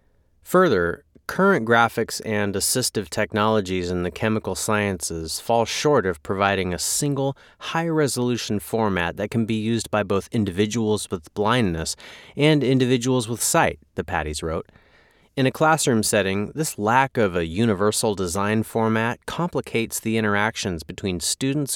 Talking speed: 140 wpm